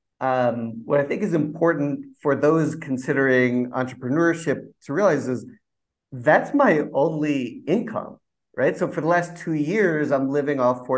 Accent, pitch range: American, 120-145 Hz